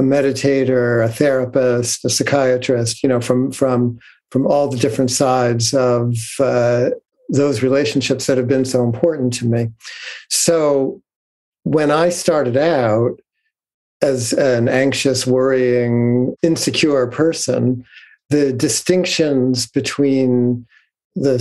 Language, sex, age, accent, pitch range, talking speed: English, male, 50-69, American, 125-140 Hz, 110 wpm